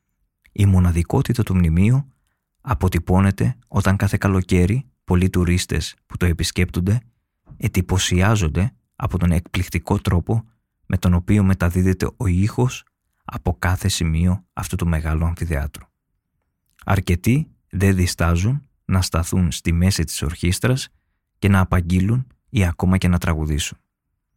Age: 20-39